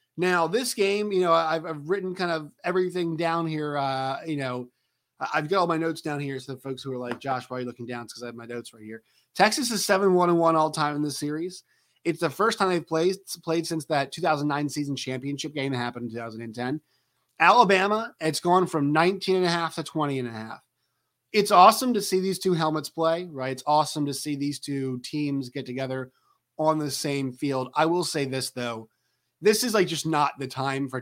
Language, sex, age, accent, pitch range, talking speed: English, male, 30-49, American, 130-180 Hz, 230 wpm